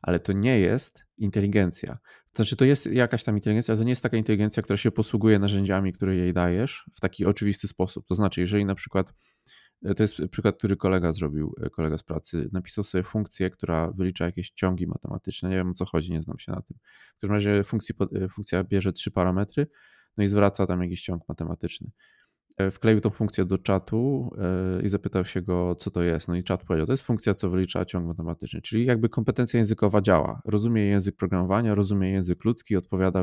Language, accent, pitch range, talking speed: Polish, native, 90-110 Hz, 205 wpm